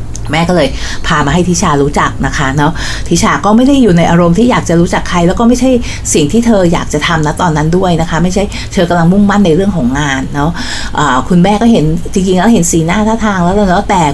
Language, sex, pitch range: Thai, female, 165-220 Hz